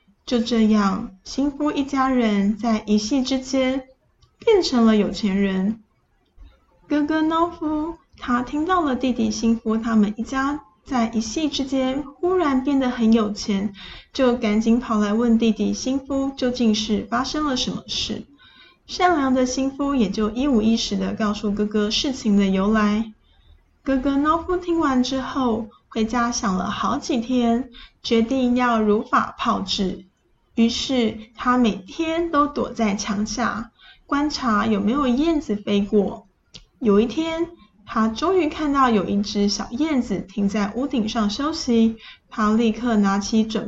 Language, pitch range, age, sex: Chinese, 215-275 Hz, 10-29, female